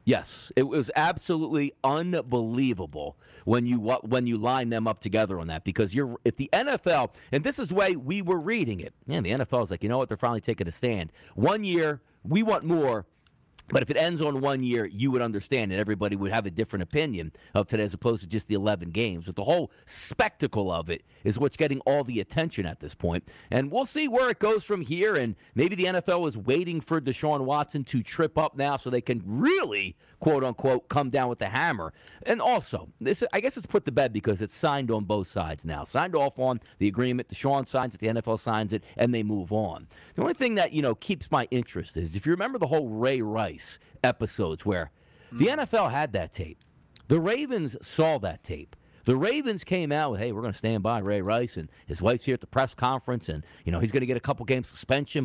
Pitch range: 105-160 Hz